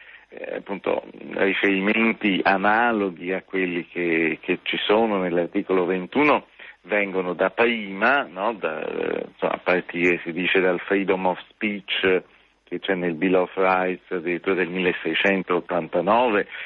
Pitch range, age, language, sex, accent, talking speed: 90-100 Hz, 50-69, Italian, male, native, 120 wpm